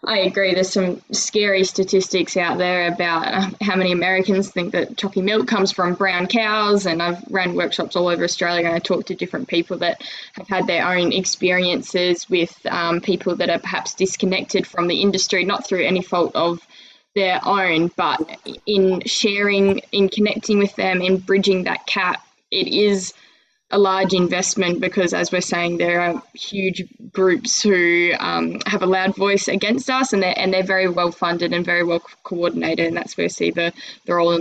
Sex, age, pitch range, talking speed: female, 10-29, 175-200 Hz, 185 wpm